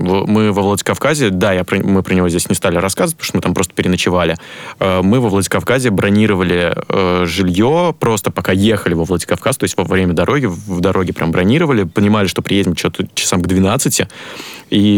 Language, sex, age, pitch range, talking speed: Russian, male, 20-39, 95-110 Hz, 190 wpm